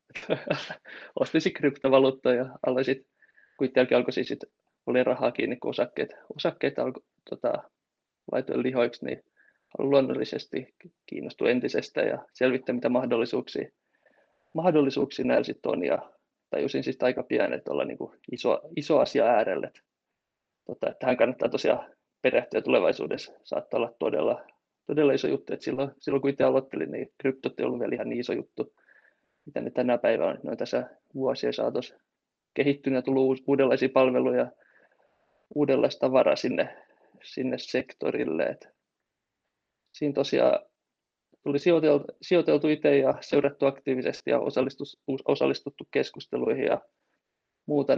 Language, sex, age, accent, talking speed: Finnish, male, 20-39, native, 130 wpm